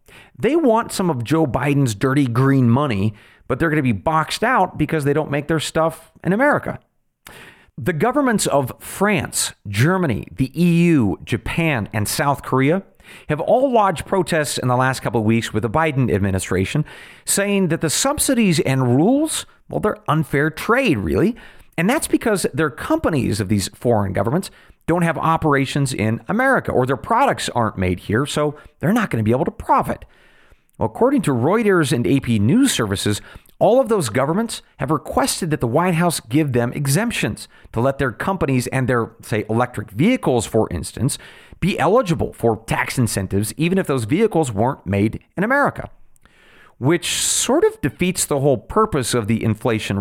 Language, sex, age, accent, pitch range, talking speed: English, male, 40-59, American, 115-175 Hz, 170 wpm